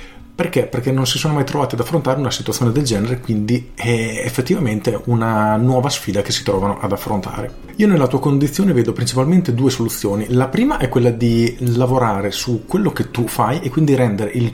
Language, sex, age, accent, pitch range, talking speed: Italian, male, 40-59, native, 105-130 Hz, 195 wpm